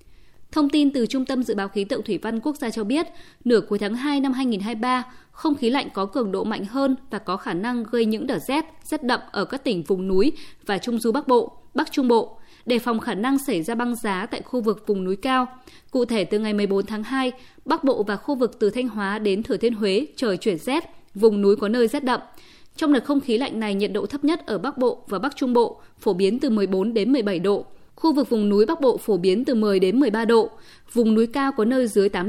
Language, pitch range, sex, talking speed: Vietnamese, 210-275 Hz, female, 255 wpm